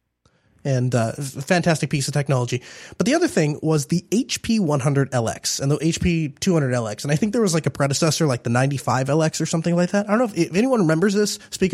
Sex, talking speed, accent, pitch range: male, 220 wpm, American, 140-180 Hz